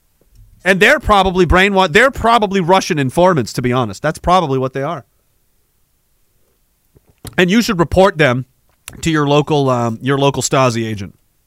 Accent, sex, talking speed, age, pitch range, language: American, male, 150 wpm, 30-49, 135-200 Hz, English